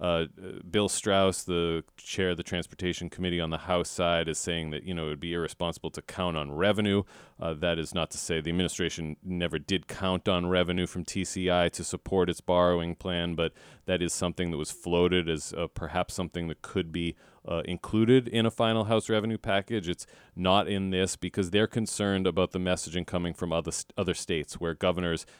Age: 30-49